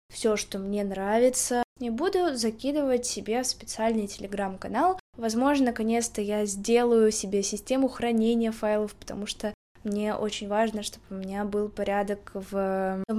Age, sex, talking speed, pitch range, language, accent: 10-29, female, 140 wpm, 210-250 Hz, Russian, native